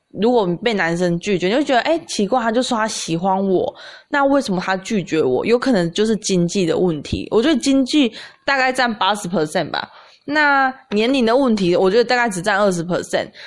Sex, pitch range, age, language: female, 175-245 Hz, 20-39, Chinese